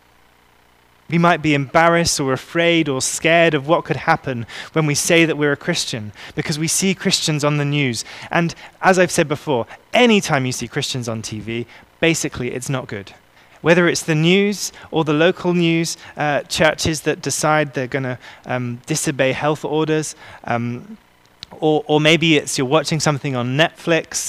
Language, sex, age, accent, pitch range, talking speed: English, male, 20-39, British, 115-165 Hz, 170 wpm